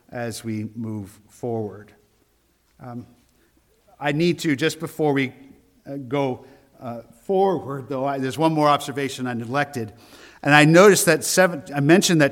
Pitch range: 125-160 Hz